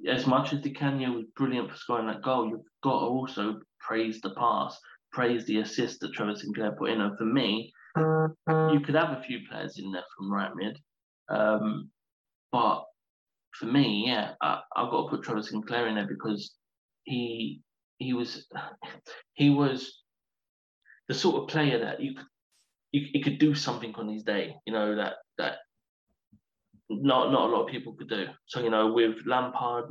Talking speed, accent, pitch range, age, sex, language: 185 wpm, British, 110-130 Hz, 20-39, male, English